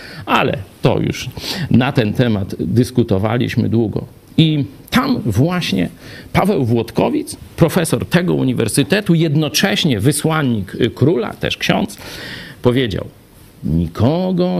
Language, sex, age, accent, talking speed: Polish, male, 50-69, native, 95 wpm